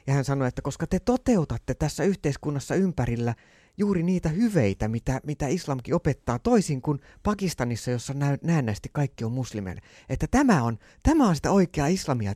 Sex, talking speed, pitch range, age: male, 165 wpm, 105-145 Hz, 30-49